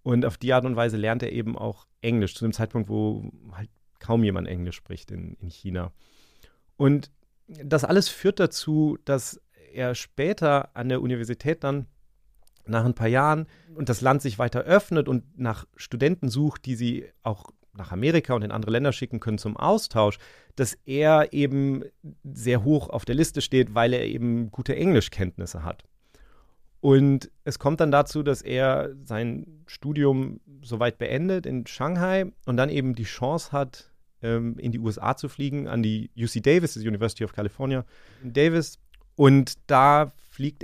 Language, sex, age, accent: German, male, 30-49, German